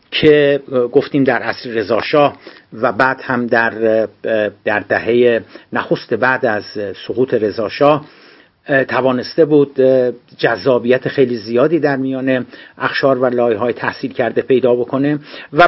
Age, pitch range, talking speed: 50-69, 130-155 Hz, 120 wpm